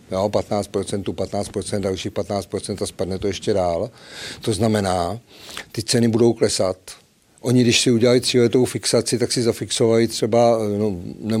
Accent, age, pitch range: native, 50-69, 105-120 Hz